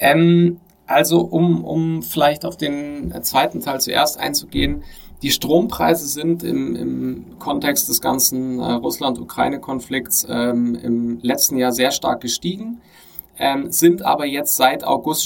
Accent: German